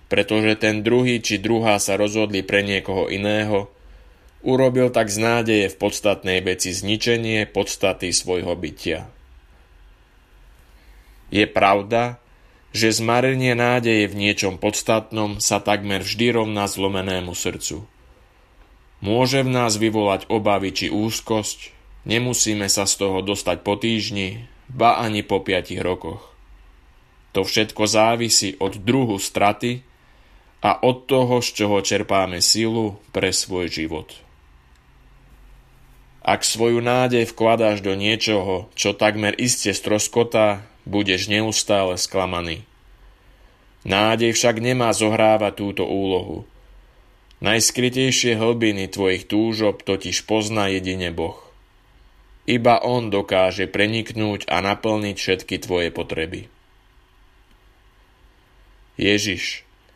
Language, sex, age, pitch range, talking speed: Slovak, male, 20-39, 95-115 Hz, 105 wpm